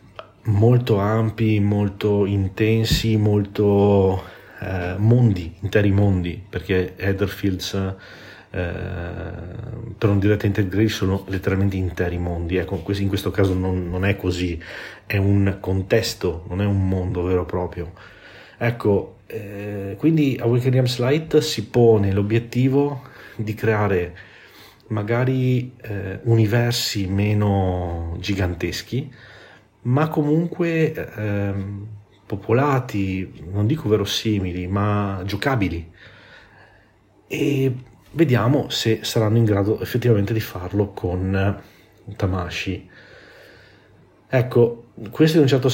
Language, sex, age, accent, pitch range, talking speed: Italian, male, 40-59, native, 95-115 Hz, 105 wpm